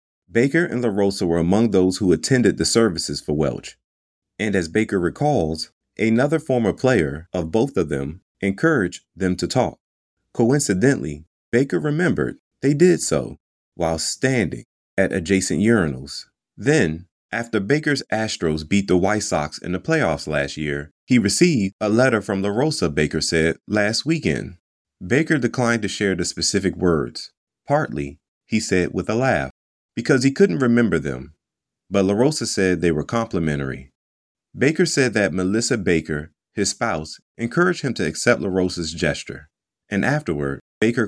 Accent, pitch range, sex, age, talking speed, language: American, 80-115 Hz, male, 30-49, 150 wpm, English